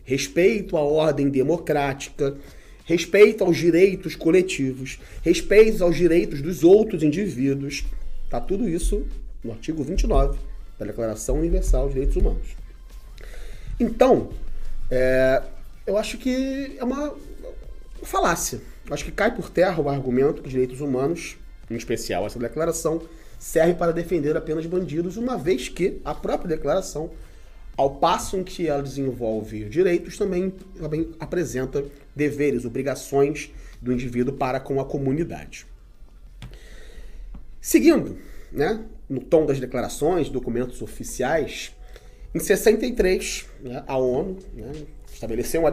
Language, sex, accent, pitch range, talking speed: Portuguese, male, Brazilian, 135-185 Hz, 125 wpm